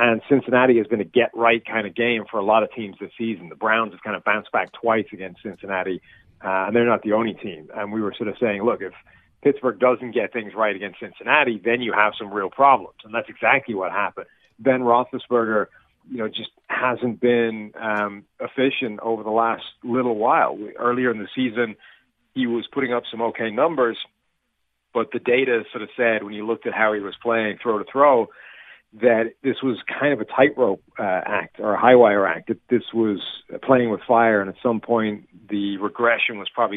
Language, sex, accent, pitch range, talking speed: English, male, American, 105-120 Hz, 200 wpm